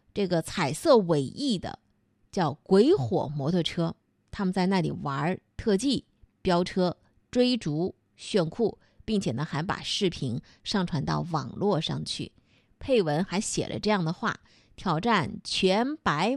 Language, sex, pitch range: Chinese, female, 160-220 Hz